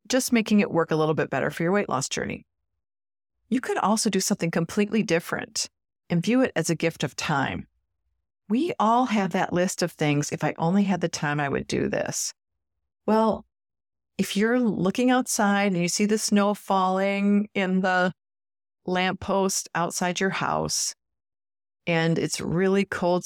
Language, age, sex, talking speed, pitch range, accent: English, 40-59, female, 170 wpm, 145-205 Hz, American